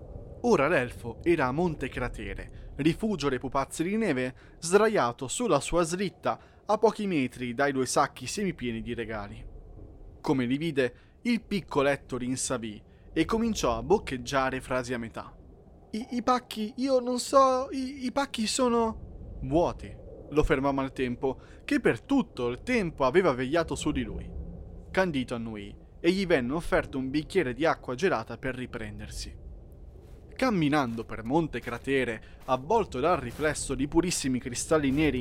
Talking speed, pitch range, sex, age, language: 145 wpm, 120-170 Hz, male, 20-39, Italian